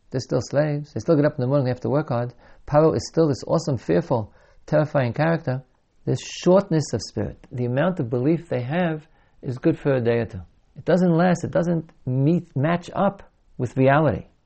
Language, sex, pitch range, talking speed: English, male, 125-160 Hz, 210 wpm